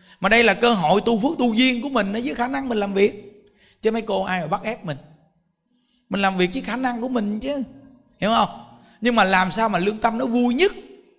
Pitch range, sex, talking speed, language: 175-230 Hz, male, 245 wpm, Vietnamese